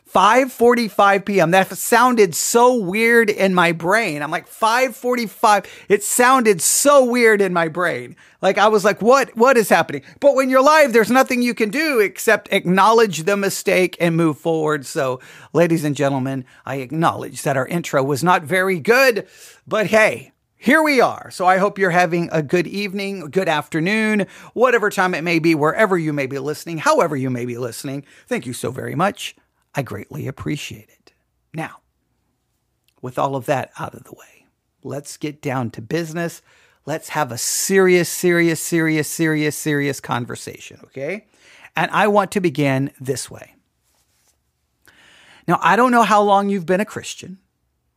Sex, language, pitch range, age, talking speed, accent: male, English, 150-215 Hz, 40-59, 170 wpm, American